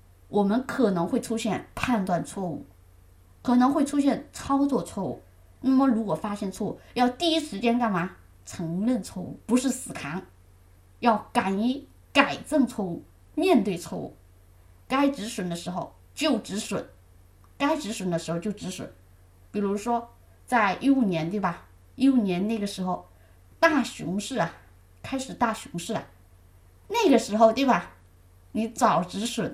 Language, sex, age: Chinese, female, 20-39